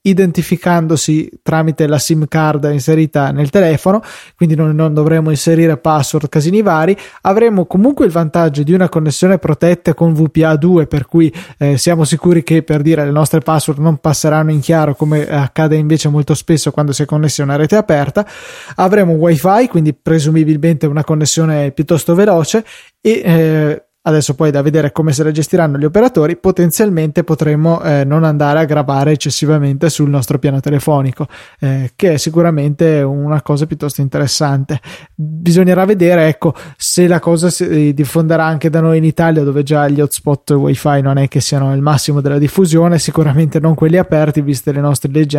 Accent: native